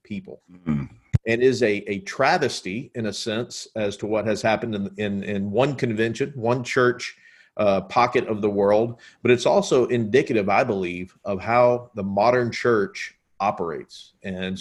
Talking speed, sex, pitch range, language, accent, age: 160 wpm, male, 105-125 Hz, English, American, 40-59